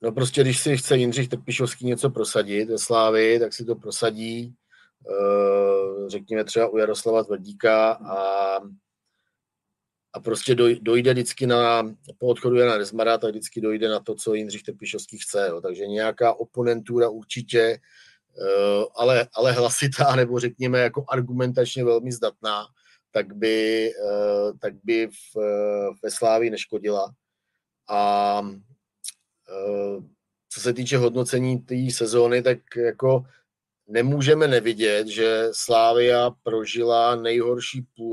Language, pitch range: Czech, 110-125 Hz